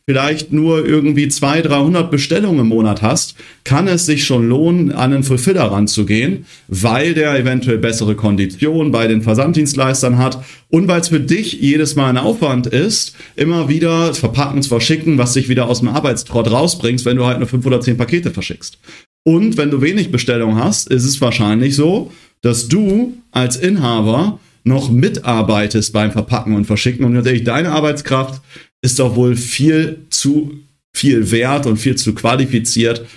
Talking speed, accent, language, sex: 170 wpm, German, German, male